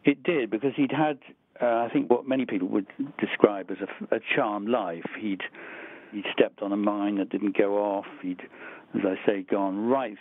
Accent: British